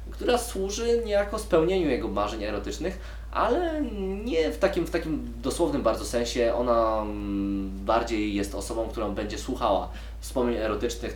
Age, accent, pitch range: 20-39, native, 100-125 Hz